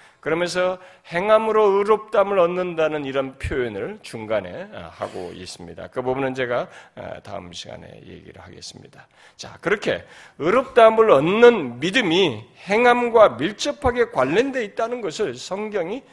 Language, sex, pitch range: Korean, male, 135-225 Hz